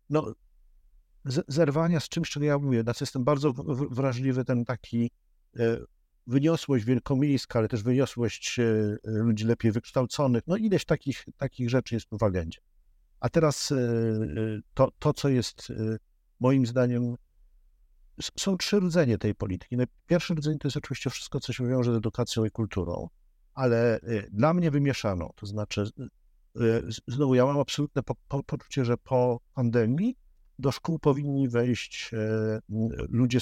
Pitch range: 110-145 Hz